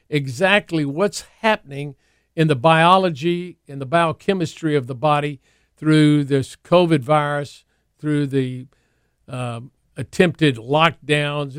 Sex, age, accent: male, 50-69, American